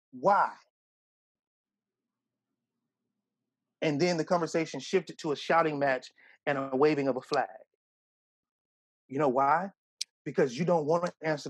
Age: 30-49